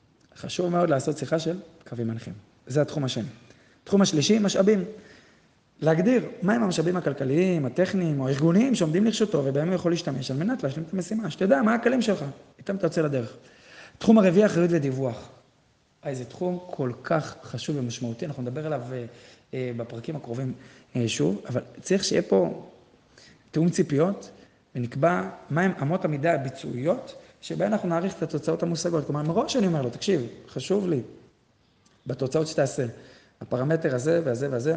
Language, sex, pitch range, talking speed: Hebrew, male, 135-175 Hz, 150 wpm